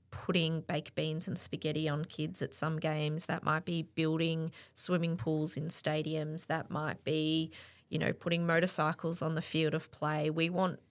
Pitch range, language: 155-170 Hz, English